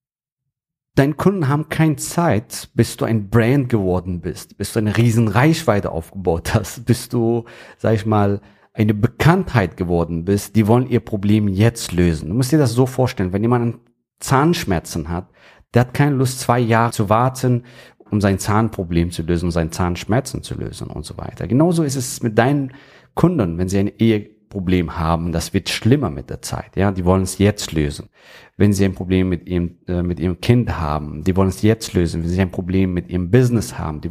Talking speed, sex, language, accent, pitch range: 200 wpm, male, German, German, 95-120 Hz